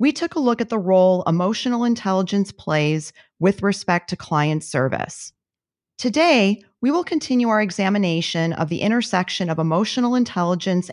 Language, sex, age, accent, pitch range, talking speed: English, female, 40-59, American, 170-225 Hz, 150 wpm